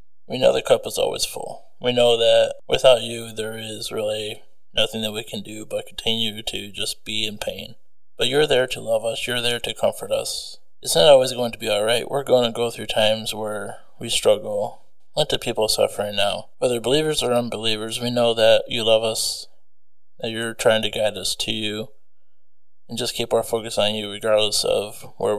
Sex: male